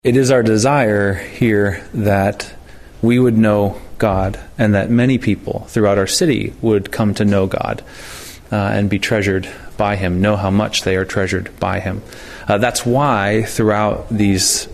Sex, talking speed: male, 165 wpm